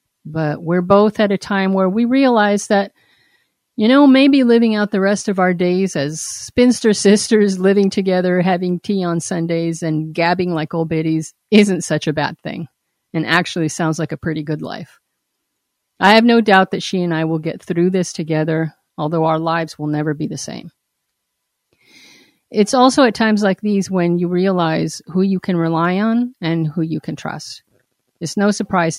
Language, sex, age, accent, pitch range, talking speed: English, female, 50-69, American, 160-195 Hz, 185 wpm